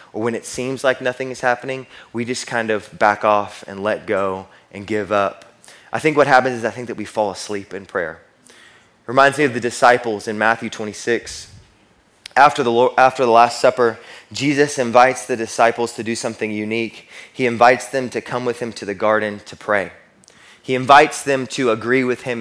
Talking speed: 205 wpm